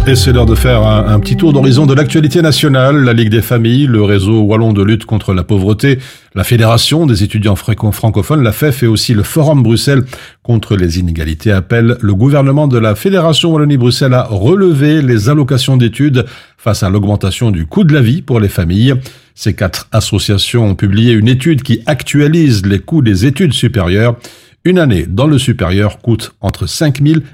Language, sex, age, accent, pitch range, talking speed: French, male, 50-69, French, 105-135 Hz, 185 wpm